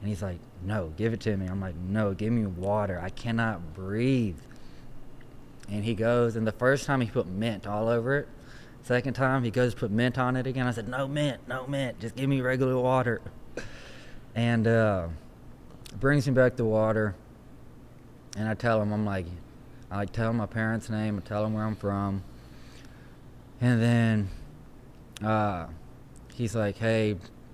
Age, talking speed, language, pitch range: 20-39, 175 wpm, English, 100-120 Hz